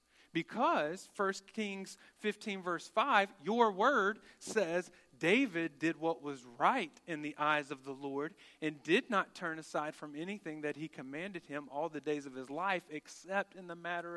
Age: 40-59